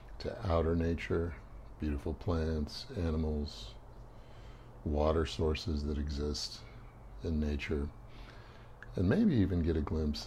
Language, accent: English, American